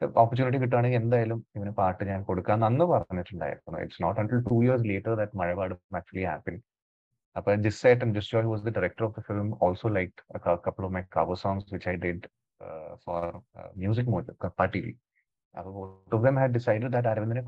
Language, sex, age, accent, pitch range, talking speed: Malayalam, male, 30-49, native, 100-125 Hz, 140 wpm